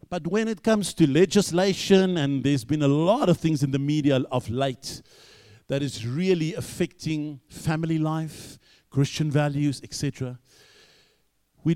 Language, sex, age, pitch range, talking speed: English, male, 50-69, 135-175 Hz, 145 wpm